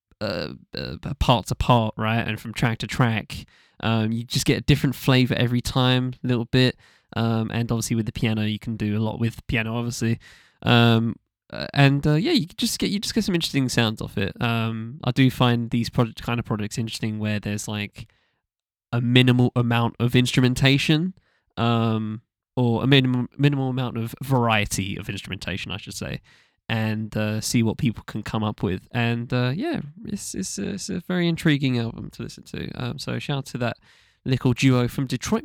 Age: 10-29